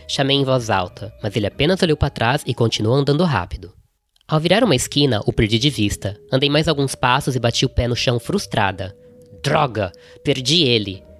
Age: 10-29